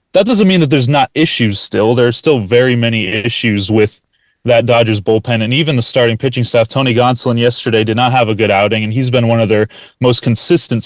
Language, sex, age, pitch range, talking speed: English, male, 20-39, 115-145 Hz, 225 wpm